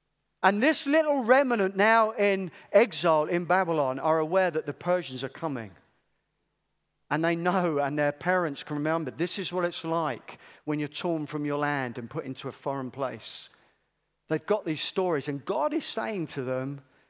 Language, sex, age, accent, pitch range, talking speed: English, male, 50-69, British, 145-185 Hz, 180 wpm